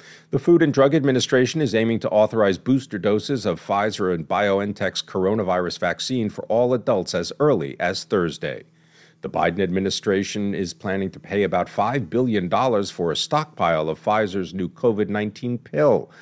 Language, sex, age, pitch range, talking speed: English, male, 50-69, 95-130 Hz, 155 wpm